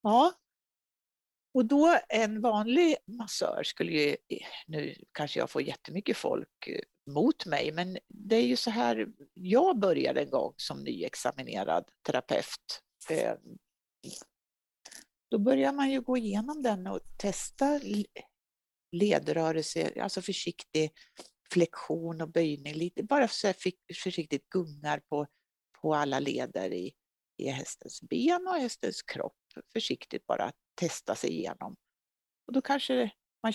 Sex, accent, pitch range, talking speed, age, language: female, native, 165-255 Hz, 120 wpm, 60-79, Swedish